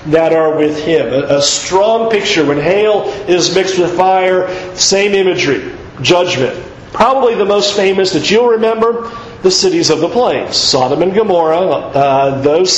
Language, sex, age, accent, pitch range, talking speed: English, male, 40-59, American, 175-225 Hz, 155 wpm